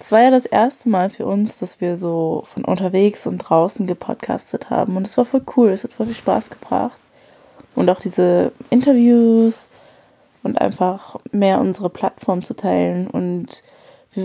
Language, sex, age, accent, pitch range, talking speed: German, female, 20-39, German, 180-225 Hz, 175 wpm